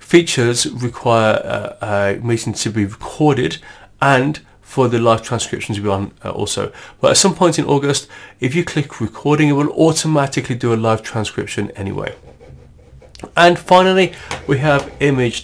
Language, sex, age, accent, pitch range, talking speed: English, male, 30-49, British, 110-145 Hz, 150 wpm